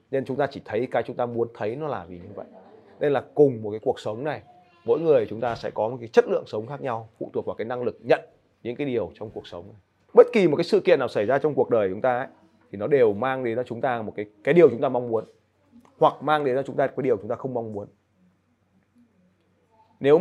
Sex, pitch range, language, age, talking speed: male, 110-170 Hz, Vietnamese, 20-39, 280 wpm